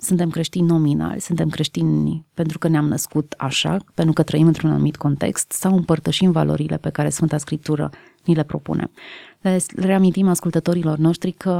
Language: Romanian